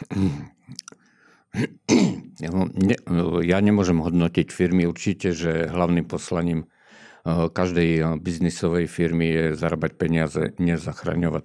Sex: male